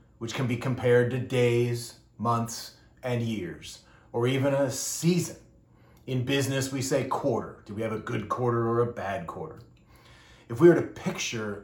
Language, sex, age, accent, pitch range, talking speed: English, male, 30-49, American, 115-145 Hz, 170 wpm